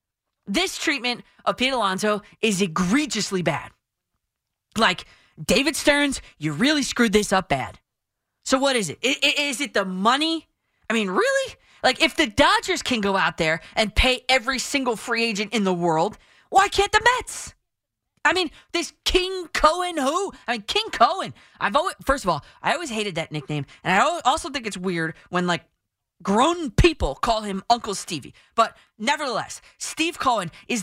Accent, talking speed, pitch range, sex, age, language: American, 175 wpm, 185-290 Hz, female, 20-39, English